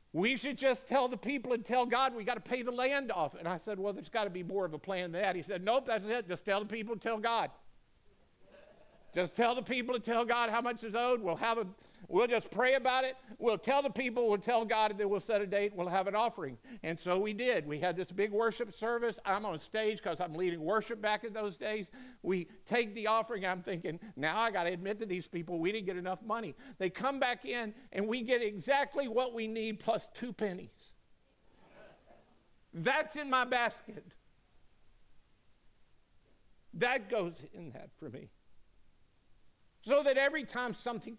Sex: male